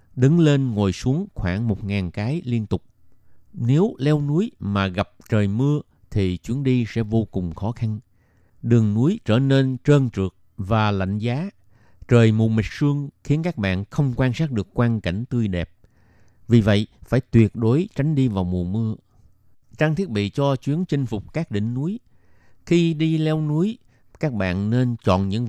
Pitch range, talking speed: 100-135 Hz, 180 wpm